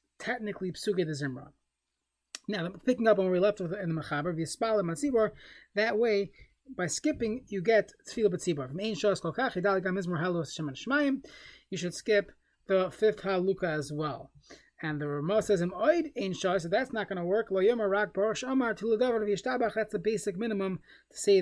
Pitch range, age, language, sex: 175-230 Hz, 30-49, English, male